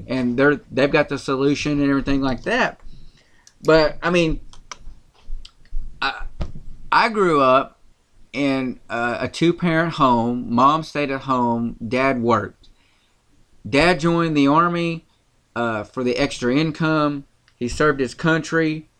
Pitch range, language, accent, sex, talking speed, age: 120-140 Hz, English, American, male, 130 wpm, 30-49